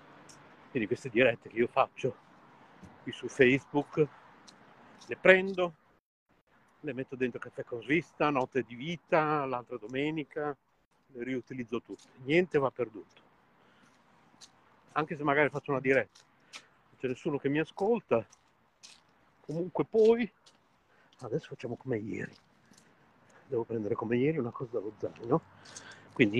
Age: 50-69